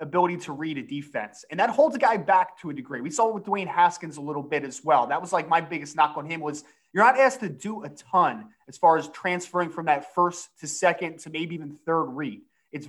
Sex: male